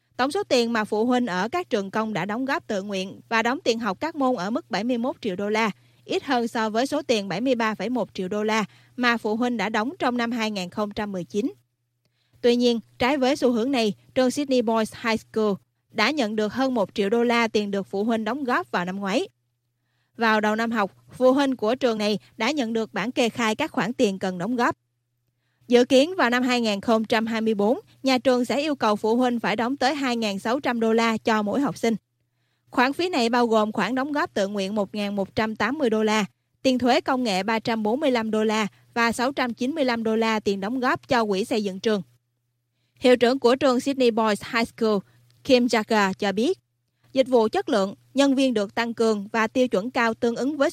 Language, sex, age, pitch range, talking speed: Vietnamese, female, 20-39, 200-250 Hz, 210 wpm